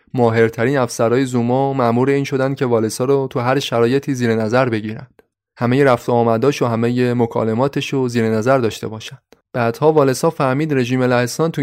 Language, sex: Persian, male